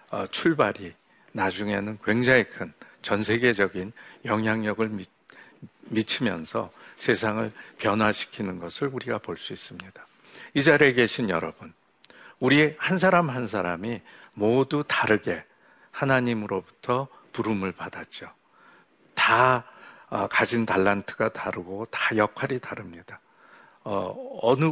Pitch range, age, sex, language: 100-125 Hz, 50-69, male, Korean